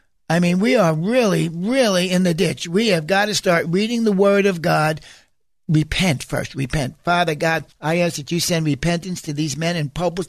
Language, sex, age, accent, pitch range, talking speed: English, male, 60-79, American, 165-230 Hz, 205 wpm